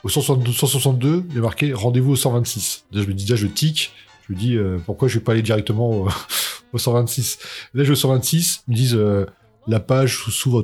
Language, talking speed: French, 245 wpm